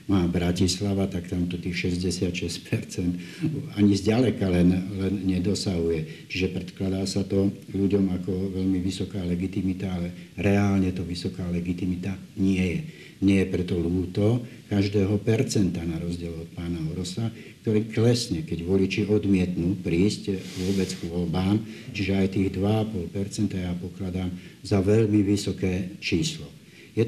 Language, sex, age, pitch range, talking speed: Slovak, male, 60-79, 90-100 Hz, 125 wpm